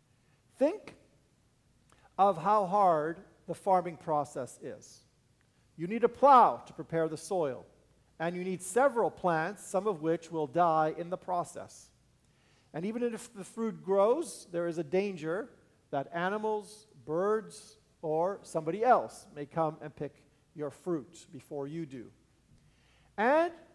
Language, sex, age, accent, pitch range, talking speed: English, male, 50-69, American, 145-205 Hz, 140 wpm